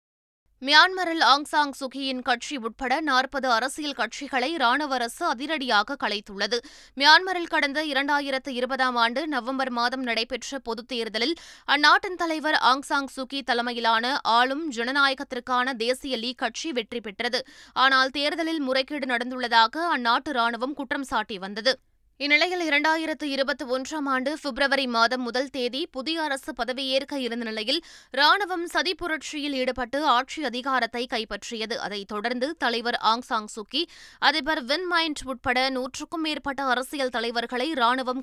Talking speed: 120 wpm